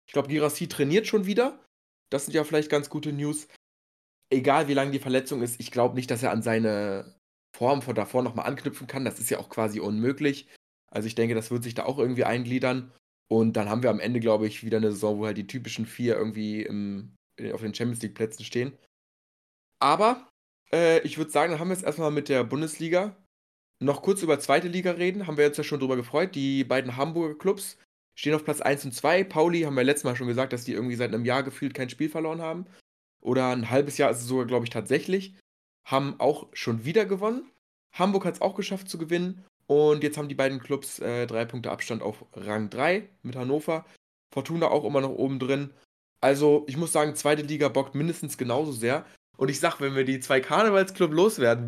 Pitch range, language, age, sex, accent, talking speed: 120-160 Hz, German, 20-39, male, German, 215 wpm